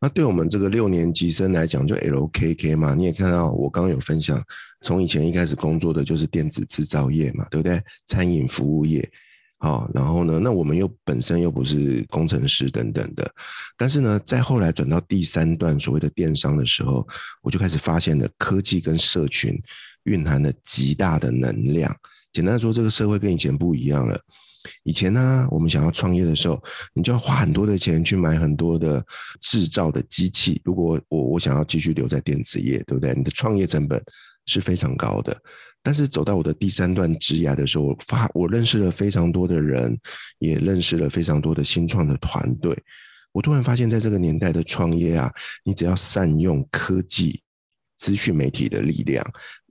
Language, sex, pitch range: Chinese, male, 80-95 Hz